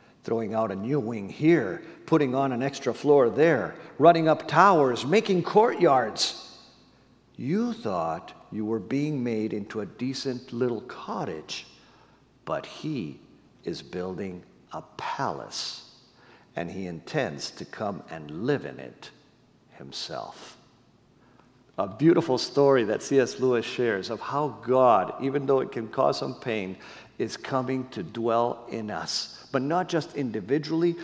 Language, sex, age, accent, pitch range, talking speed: English, male, 50-69, American, 125-160 Hz, 135 wpm